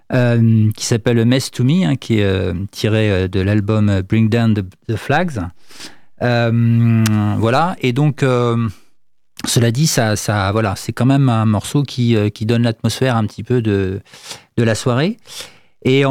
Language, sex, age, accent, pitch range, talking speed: French, male, 40-59, French, 110-135 Hz, 190 wpm